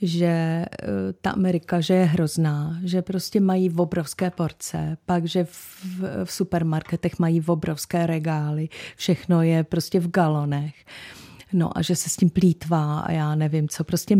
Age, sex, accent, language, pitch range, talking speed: 30-49, female, native, Czech, 155-185 Hz, 160 wpm